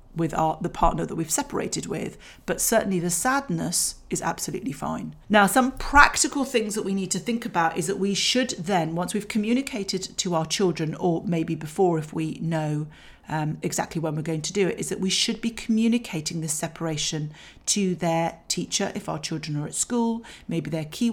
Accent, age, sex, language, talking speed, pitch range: British, 40-59, female, English, 195 wpm, 160-205 Hz